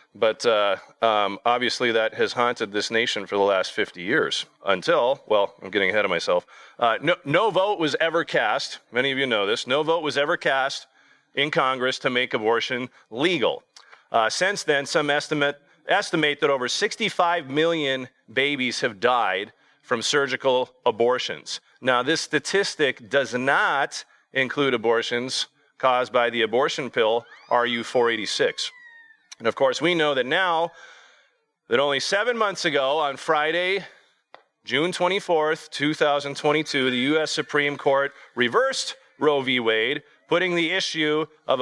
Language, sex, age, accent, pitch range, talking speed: English, male, 40-59, American, 125-175 Hz, 145 wpm